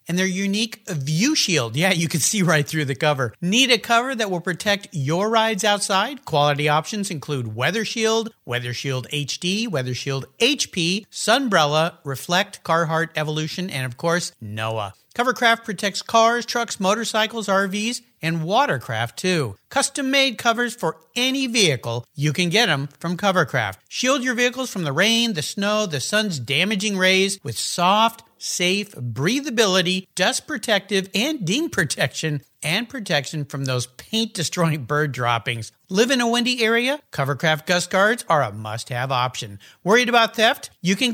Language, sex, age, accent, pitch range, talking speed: English, male, 50-69, American, 145-220 Hz, 155 wpm